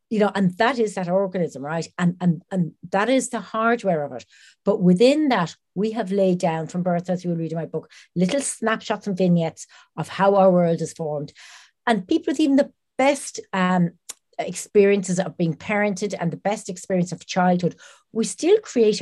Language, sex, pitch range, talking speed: English, female, 165-210 Hz, 200 wpm